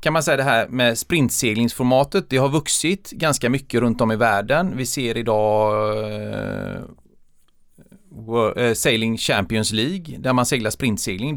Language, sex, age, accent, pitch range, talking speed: Swedish, male, 30-49, native, 115-150 Hz, 145 wpm